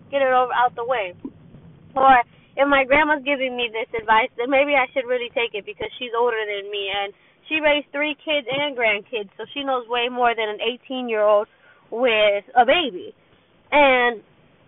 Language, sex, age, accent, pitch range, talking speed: English, female, 20-39, American, 225-280 Hz, 180 wpm